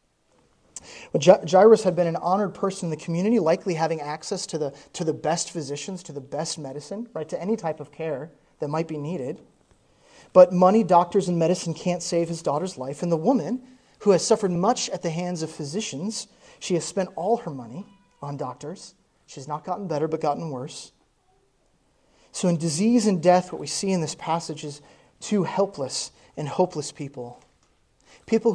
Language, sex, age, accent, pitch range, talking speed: English, male, 30-49, American, 150-195 Hz, 185 wpm